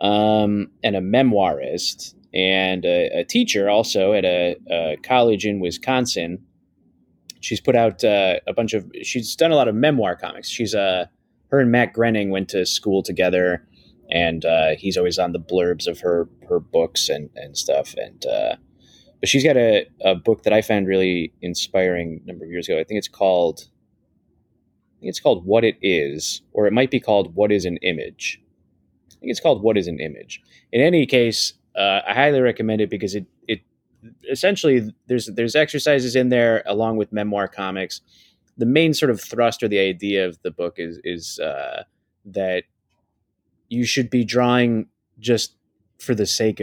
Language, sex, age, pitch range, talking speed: English, male, 20-39, 95-120 Hz, 185 wpm